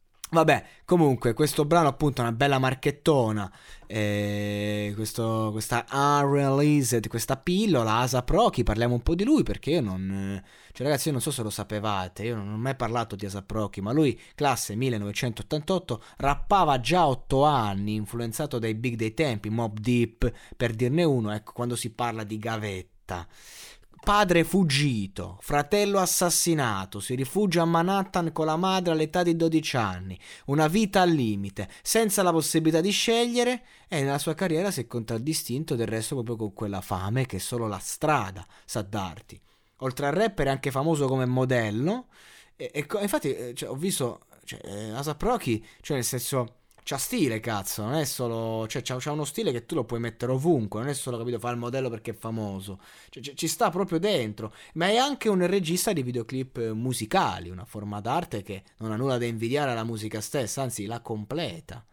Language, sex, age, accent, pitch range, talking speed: Italian, male, 20-39, native, 110-155 Hz, 180 wpm